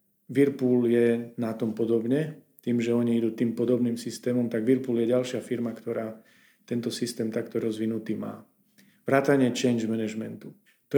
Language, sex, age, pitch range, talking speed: Slovak, male, 40-59, 115-130 Hz, 150 wpm